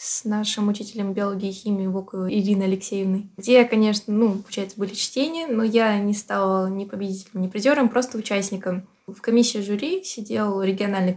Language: Russian